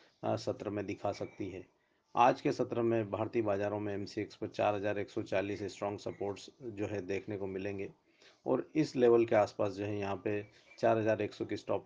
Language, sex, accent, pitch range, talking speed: English, male, Indian, 100-115 Hz, 180 wpm